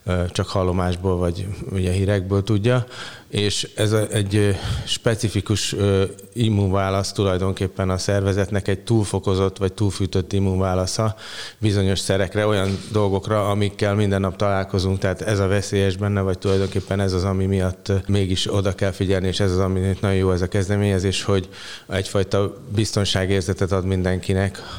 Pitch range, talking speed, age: 95-100 Hz, 135 wpm, 30-49